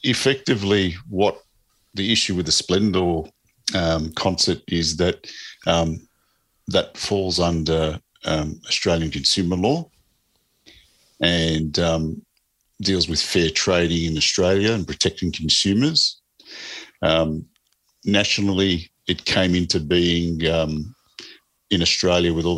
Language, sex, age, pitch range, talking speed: English, male, 50-69, 80-95 Hz, 110 wpm